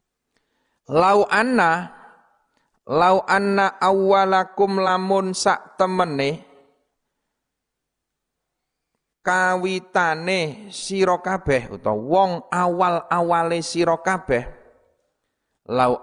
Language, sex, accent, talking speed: Indonesian, male, native, 60 wpm